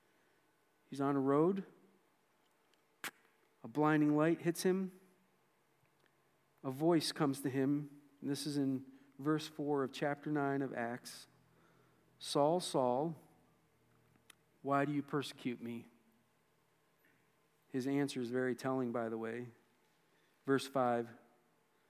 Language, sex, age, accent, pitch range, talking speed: English, male, 50-69, American, 130-155 Hz, 110 wpm